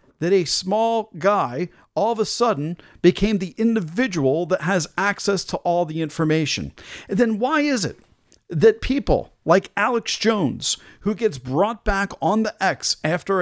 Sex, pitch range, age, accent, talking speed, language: male, 150-210 Hz, 50-69, American, 155 wpm, English